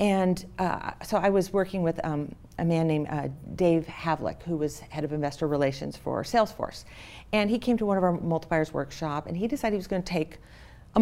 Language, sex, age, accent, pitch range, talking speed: English, female, 50-69, American, 160-200 Hz, 220 wpm